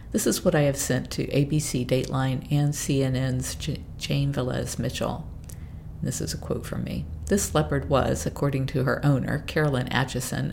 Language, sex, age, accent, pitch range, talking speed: English, female, 50-69, American, 125-155 Hz, 170 wpm